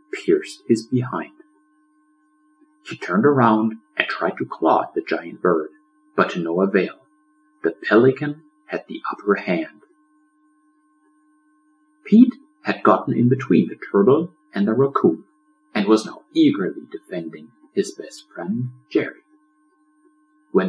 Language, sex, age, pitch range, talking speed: English, male, 50-69, 150-200 Hz, 130 wpm